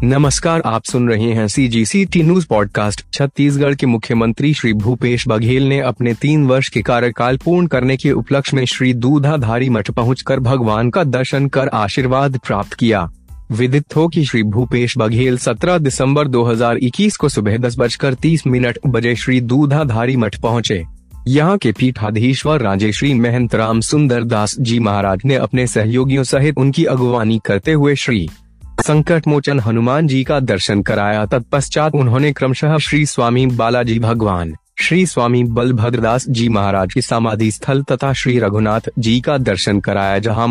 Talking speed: 150 wpm